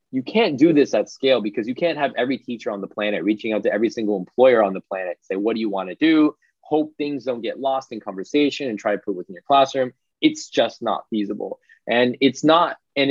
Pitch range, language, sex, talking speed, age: 105-155 Hz, English, male, 245 wpm, 20-39